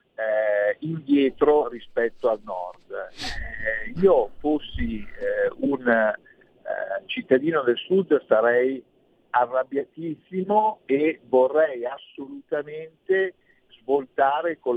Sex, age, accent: male, 50-69, native